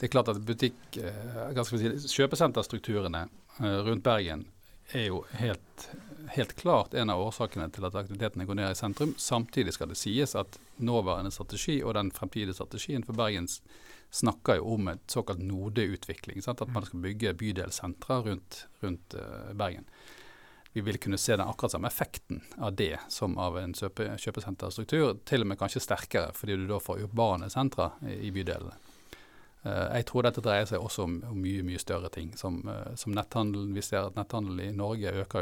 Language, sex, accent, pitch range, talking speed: English, male, Norwegian, 95-120 Hz, 170 wpm